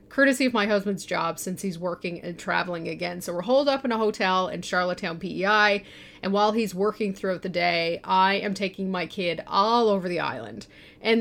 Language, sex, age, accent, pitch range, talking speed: English, female, 30-49, American, 180-225 Hz, 205 wpm